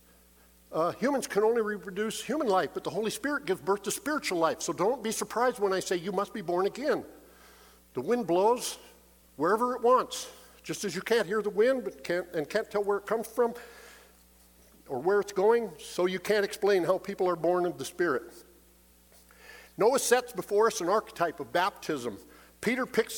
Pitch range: 180-235 Hz